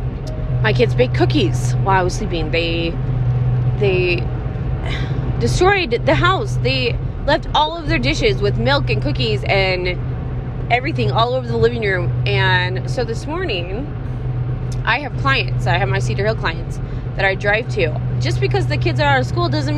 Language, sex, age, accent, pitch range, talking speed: English, female, 20-39, American, 120-130 Hz, 170 wpm